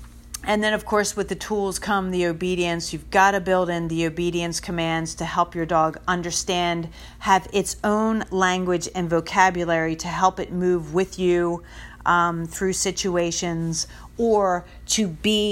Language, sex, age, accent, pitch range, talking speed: English, female, 40-59, American, 170-200 Hz, 160 wpm